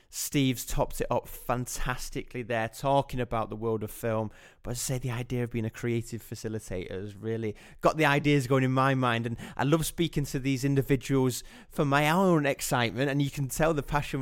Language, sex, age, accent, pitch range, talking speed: English, male, 20-39, British, 115-140 Hz, 205 wpm